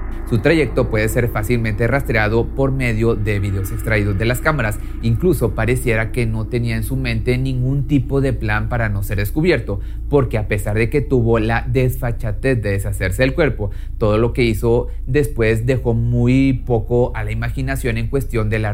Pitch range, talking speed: 110-135 Hz, 185 wpm